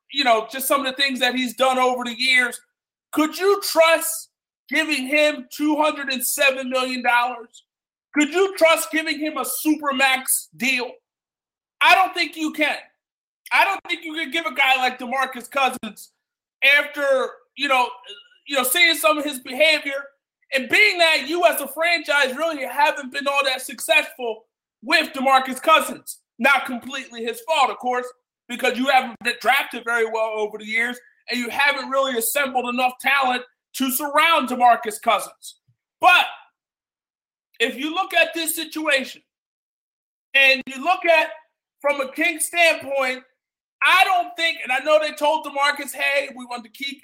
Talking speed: 160 wpm